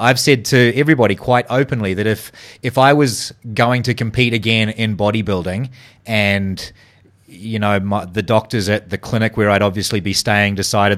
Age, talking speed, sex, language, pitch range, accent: 30-49, 170 wpm, male, English, 100-125 Hz, Australian